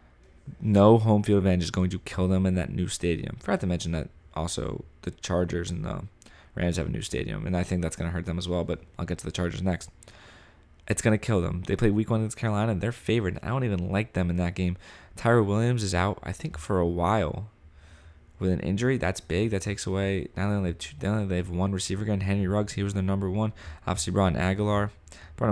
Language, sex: English, male